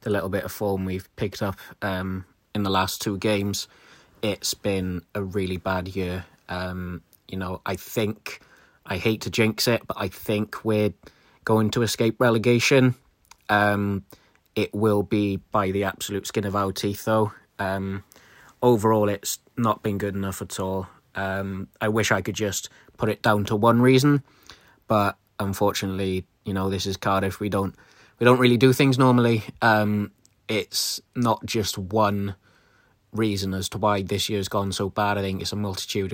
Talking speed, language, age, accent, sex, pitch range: 175 wpm, English, 20-39, British, male, 95-110 Hz